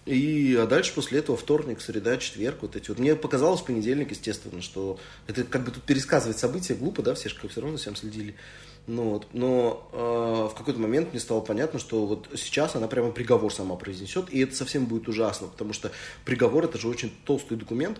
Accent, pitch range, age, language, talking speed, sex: native, 105-130 Hz, 30-49, Russian, 200 wpm, male